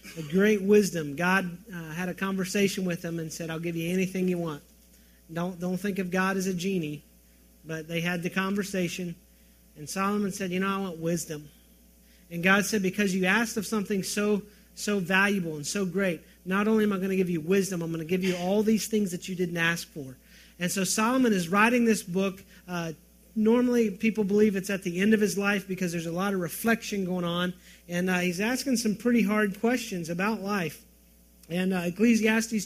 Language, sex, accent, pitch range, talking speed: English, male, American, 175-215 Hz, 210 wpm